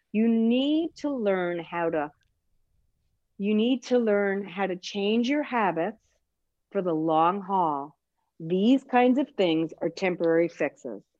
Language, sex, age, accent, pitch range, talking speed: English, female, 50-69, American, 165-225 Hz, 140 wpm